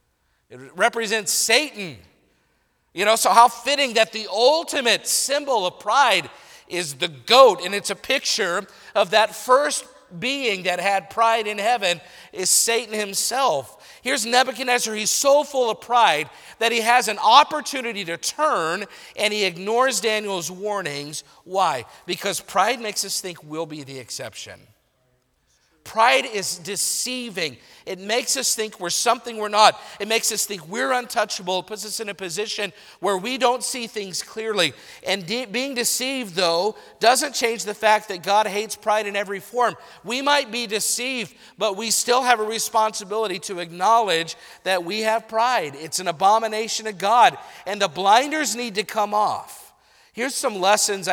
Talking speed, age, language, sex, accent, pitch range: 160 wpm, 50-69, English, male, American, 195-240 Hz